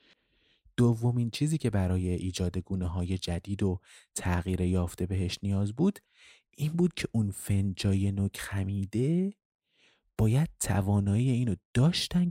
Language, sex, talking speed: Persian, male, 125 wpm